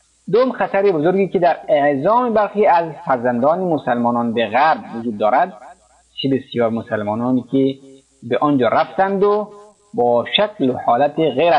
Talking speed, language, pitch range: 140 wpm, Persian, 125-195 Hz